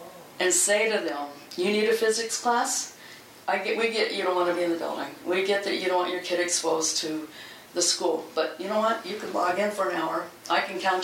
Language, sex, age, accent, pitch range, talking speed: English, female, 40-59, American, 165-205 Hz, 255 wpm